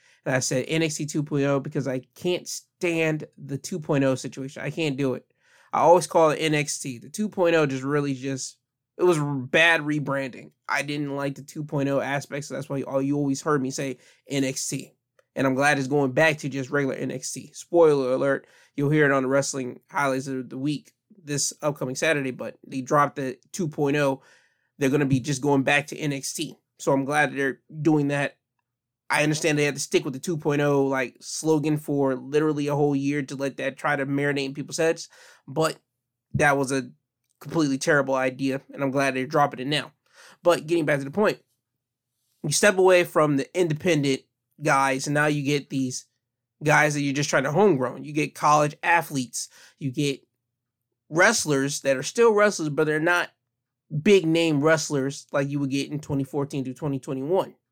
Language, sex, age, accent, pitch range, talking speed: English, male, 20-39, American, 135-150 Hz, 185 wpm